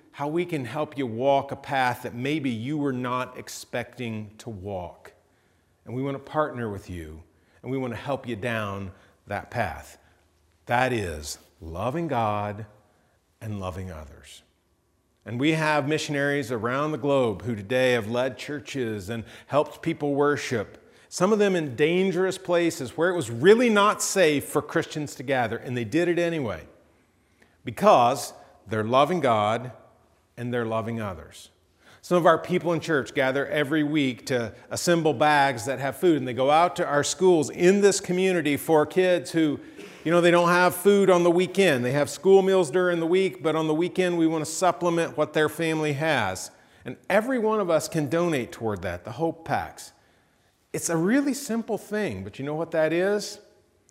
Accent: American